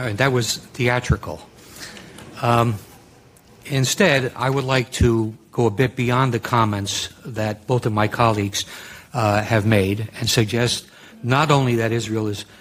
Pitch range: 110-125 Hz